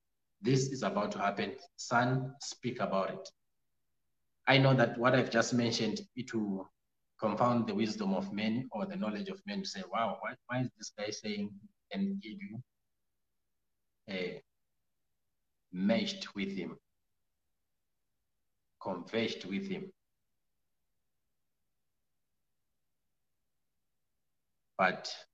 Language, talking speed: English, 110 wpm